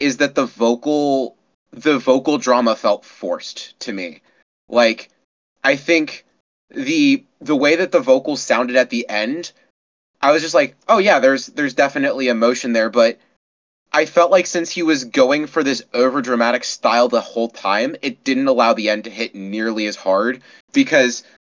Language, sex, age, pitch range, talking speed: English, male, 20-39, 115-160 Hz, 170 wpm